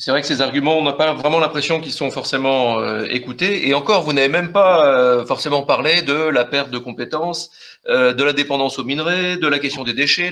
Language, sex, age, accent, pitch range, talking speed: French, male, 40-59, French, 135-185 Hz, 215 wpm